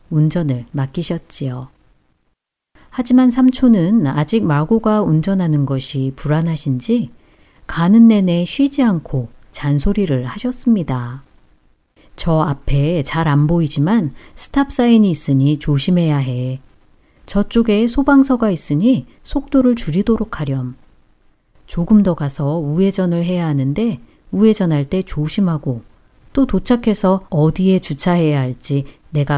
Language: Korean